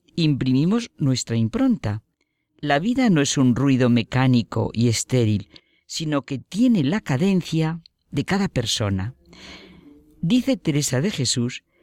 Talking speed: 120 wpm